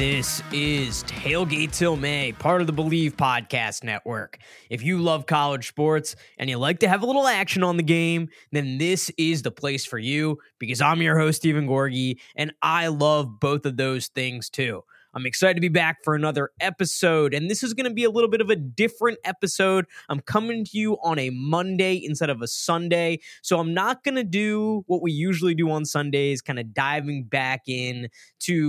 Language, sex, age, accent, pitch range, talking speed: English, male, 20-39, American, 135-180 Hz, 205 wpm